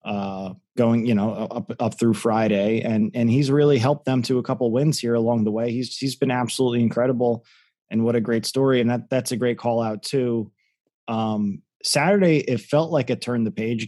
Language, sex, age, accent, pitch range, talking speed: English, male, 20-39, American, 110-130 Hz, 210 wpm